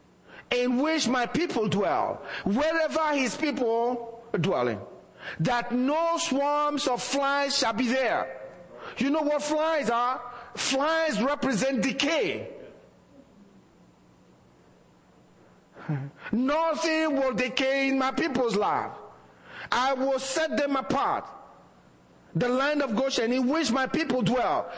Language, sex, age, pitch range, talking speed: English, male, 50-69, 190-285 Hz, 115 wpm